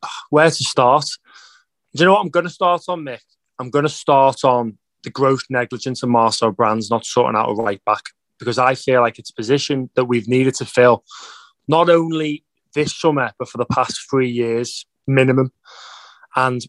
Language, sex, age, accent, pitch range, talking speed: English, male, 20-39, British, 120-145 Hz, 190 wpm